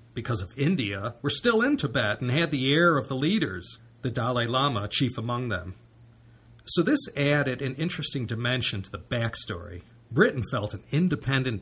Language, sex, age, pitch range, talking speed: English, male, 40-59, 110-140 Hz, 170 wpm